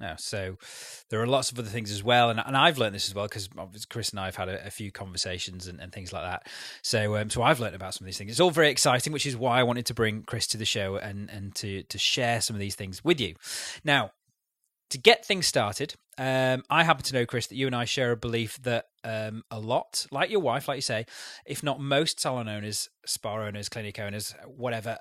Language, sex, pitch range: English, male, 105-135 Hz